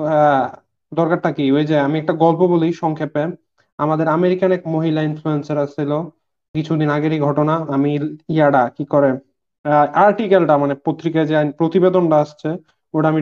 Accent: native